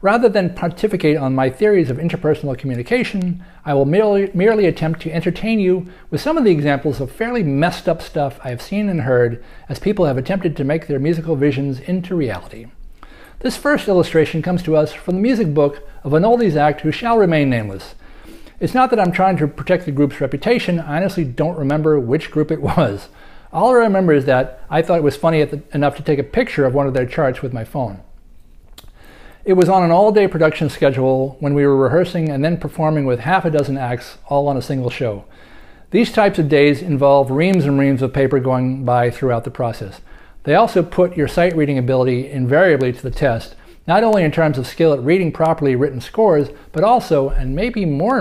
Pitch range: 135-175 Hz